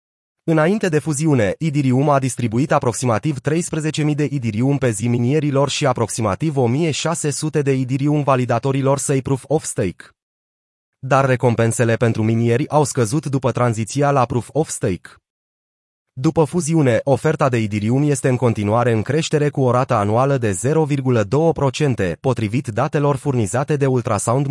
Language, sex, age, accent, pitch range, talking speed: Romanian, male, 30-49, native, 120-150 Hz, 135 wpm